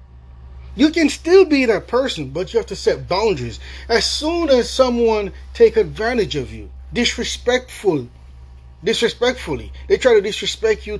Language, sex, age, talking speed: English, male, 30-49, 145 wpm